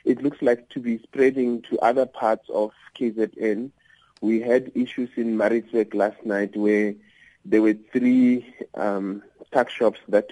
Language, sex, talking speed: English, male, 150 wpm